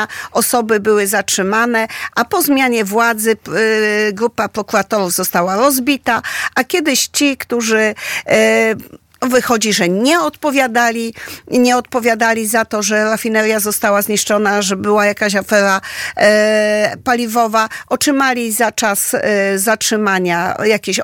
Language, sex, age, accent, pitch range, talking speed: Polish, female, 50-69, native, 205-240 Hz, 105 wpm